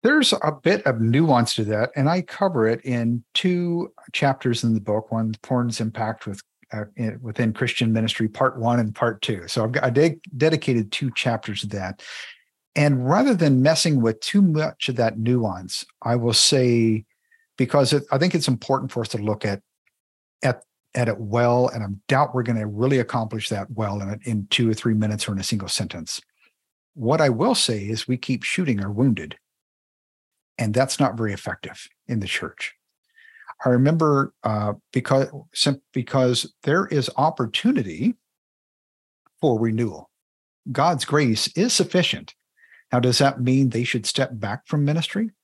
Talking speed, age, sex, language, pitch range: 175 wpm, 50-69, male, English, 110-145 Hz